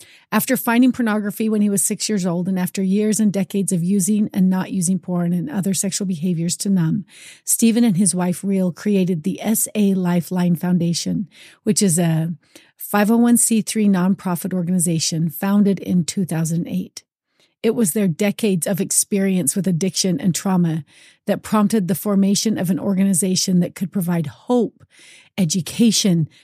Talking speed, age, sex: 150 wpm, 40-59, female